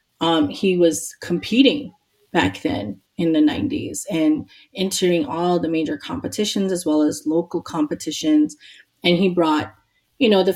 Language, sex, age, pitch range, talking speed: English, female, 30-49, 165-210 Hz, 150 wpm